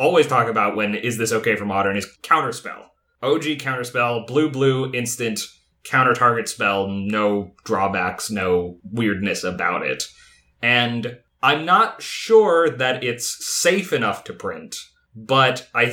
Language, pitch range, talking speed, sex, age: English, 115-155 Hz, 130 wpm, male, 30-49